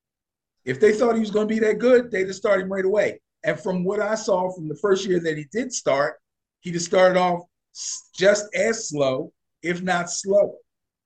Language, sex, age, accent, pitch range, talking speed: English, male, 50-69, American, 130-190 Hz, 215 wpm